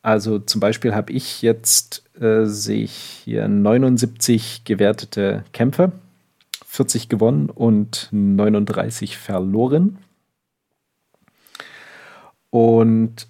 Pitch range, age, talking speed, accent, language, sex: 95-115 Hz, 40-59, 85 wpm, German, German, male